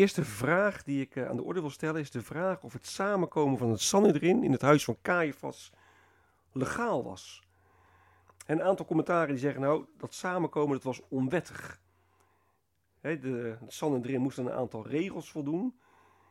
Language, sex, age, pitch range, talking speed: Dutch, male, 40-59, 100-160 Hz, 180 wpm